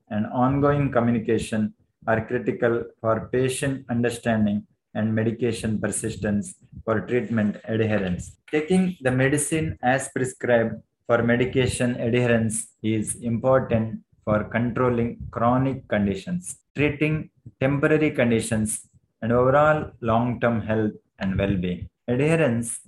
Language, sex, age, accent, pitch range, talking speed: English, male, 20-39, Indian, 115-135 Hz, 100 wpm